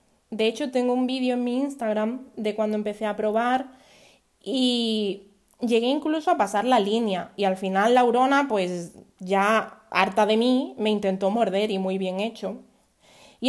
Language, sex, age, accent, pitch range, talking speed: Spanish, female, 20-39, Spanish, 200-250 Hz, 170 wpm